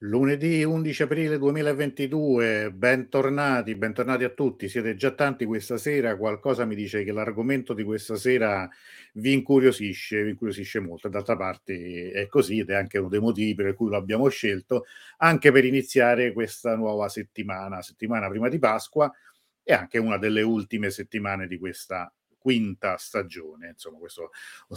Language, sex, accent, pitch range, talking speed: Italian, male, native, 100-125 Hz, 155 wpm